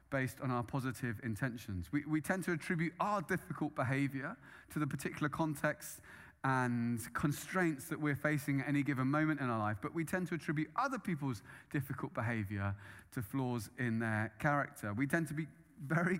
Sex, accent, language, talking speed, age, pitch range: male, British, English, 180 wpm, 30-49, 115-160 Hz